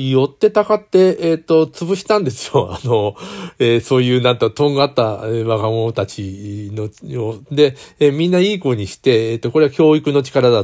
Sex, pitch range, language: male, 110-145 Hz, Japanese